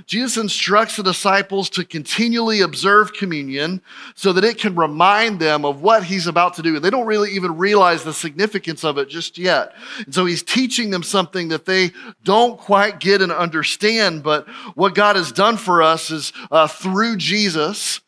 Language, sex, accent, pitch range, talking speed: English, male, American, 160-205 Hz, 185 wpm